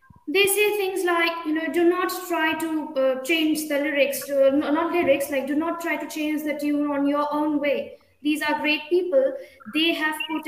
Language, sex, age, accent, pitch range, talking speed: English, female, 20-39, Indian, 290-340 Hz, 210 wpm